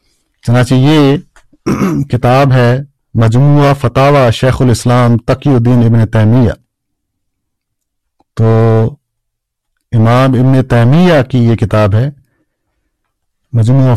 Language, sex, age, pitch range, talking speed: Urdu, male, 50-69, 110-135 Hz, 90 wpm